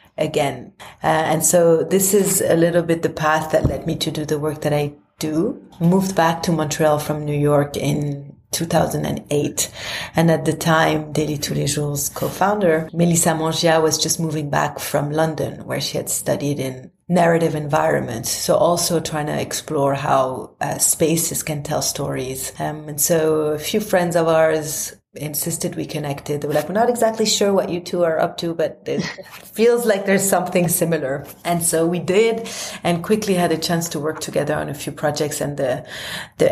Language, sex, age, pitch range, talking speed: English, female, 30-49, 150-175 Hz, 190 wpm